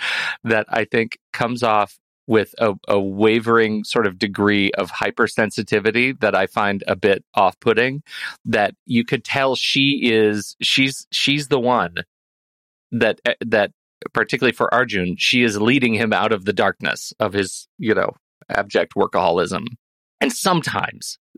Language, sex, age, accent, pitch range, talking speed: English, male, 40-59, American, 100-125 Hz, 145 wpm